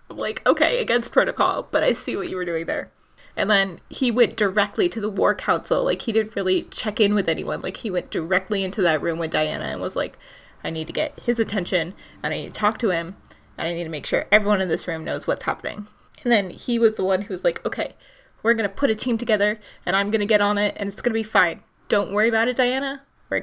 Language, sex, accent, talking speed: English, female, American, 265 wpm